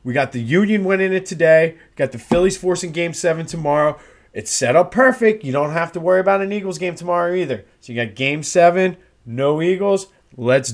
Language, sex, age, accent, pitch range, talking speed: English, male, 30-49, American, 130-180 Hz, 205 wpm